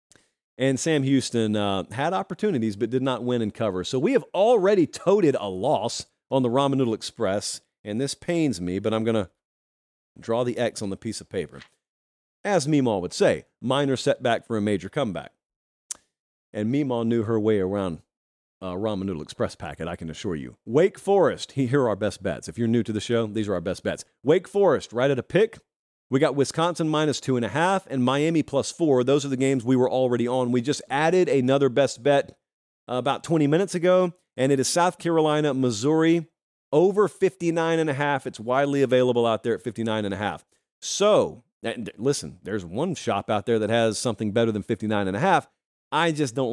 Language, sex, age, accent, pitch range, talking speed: English, male, 40-59, American, 110-140 Hz, 205 wpm